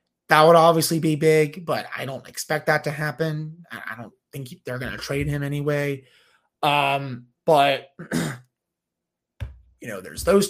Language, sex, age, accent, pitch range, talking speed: English, male, 30-49, American, 140-165 Hz, 155 wpm